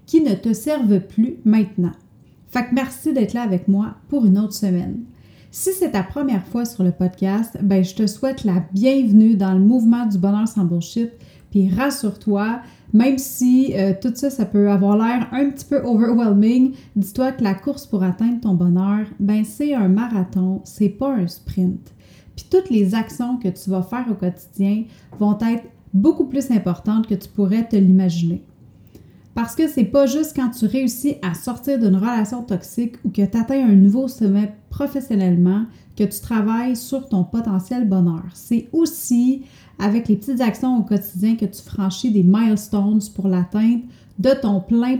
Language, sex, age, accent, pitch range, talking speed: French, female, 30-49, Canadian, 195-250 Hz, 180 wpm